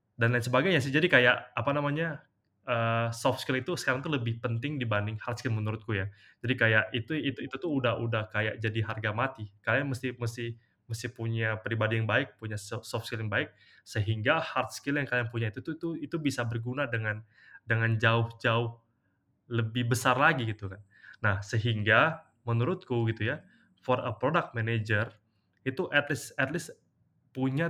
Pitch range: 115-135 Hz